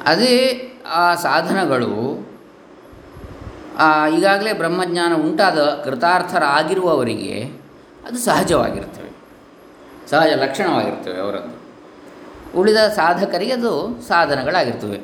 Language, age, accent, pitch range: Kannada, 20-39, native, 125-170 Hz